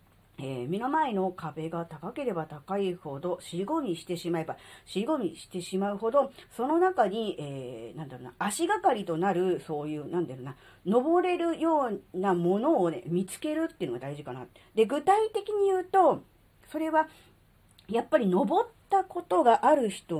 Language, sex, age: Japanese, female, 40-59